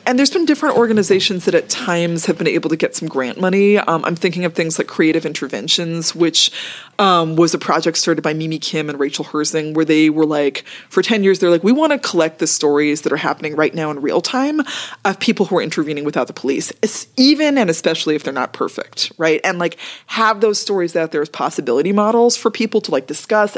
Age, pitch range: 20-39, 160-230 Hz